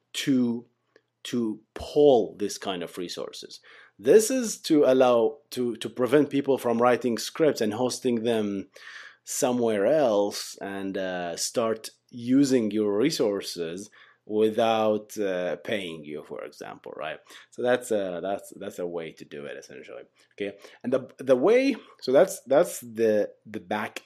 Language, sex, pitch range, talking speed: English, male, 90-125 Hz, 145 wpm